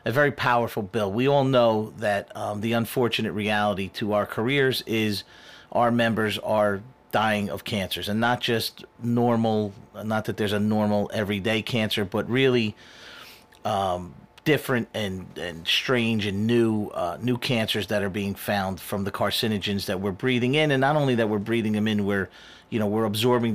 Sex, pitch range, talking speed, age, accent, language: male, 105-120 Hz, 175 wpm, 40-59, American, English